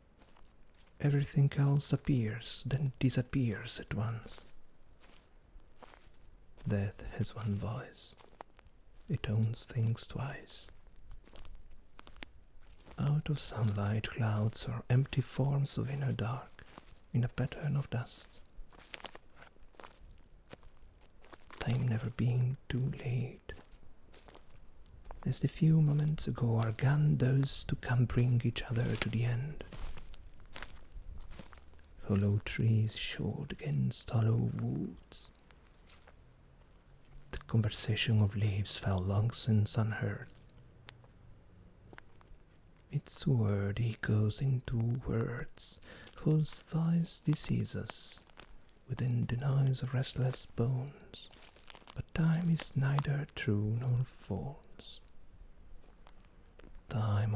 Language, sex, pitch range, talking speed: Italian, male, 105-135 Hz, 90 wpm